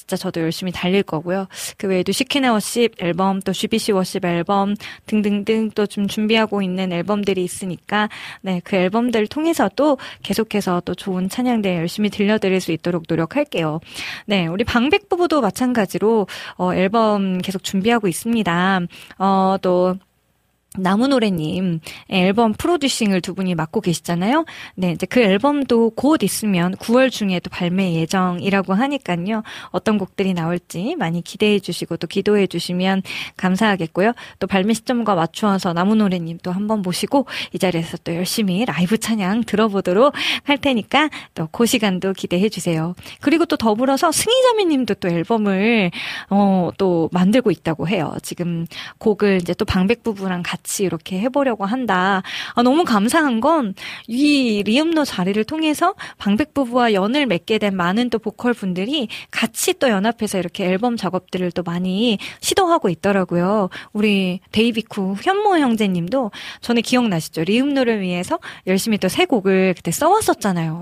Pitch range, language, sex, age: 180-235 Hz, Korean, female, 20-39